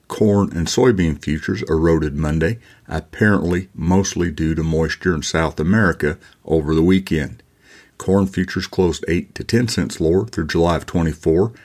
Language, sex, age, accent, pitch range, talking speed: English, male, 50-69, American, 80-95 Hz, 150 wpm